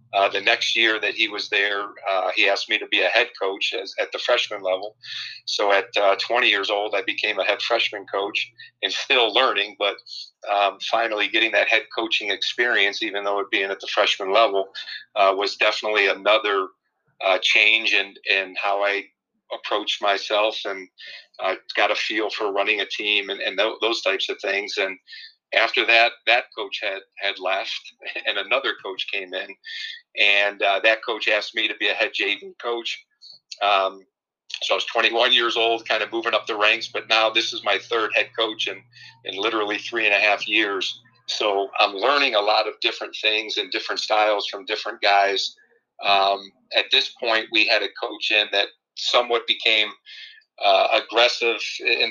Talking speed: 190 wpm